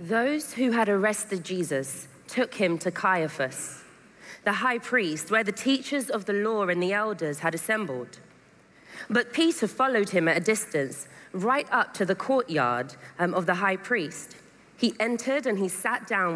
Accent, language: British, English